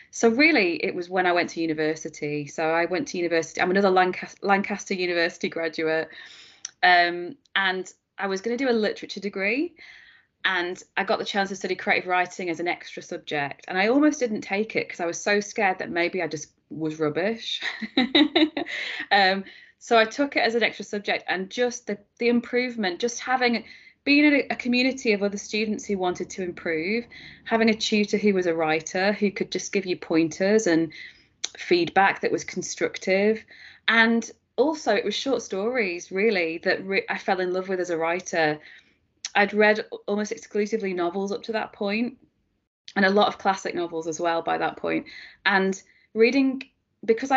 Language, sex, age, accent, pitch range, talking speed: English, female, 20-39, British, 180-230 Hz, 180 wpm